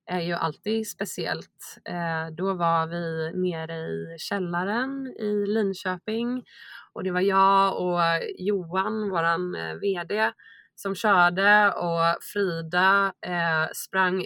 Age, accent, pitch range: 20-39, native, 170-215 Hz